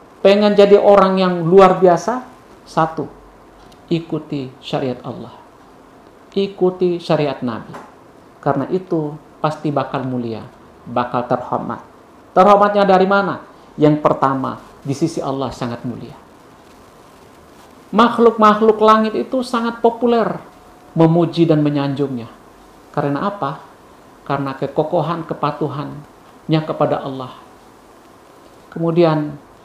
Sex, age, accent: male, 50-69, native